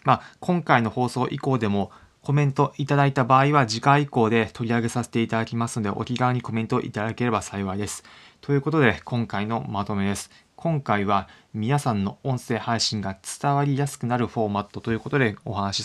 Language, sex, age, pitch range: Japanese, male, 20-39, 105-130 Hz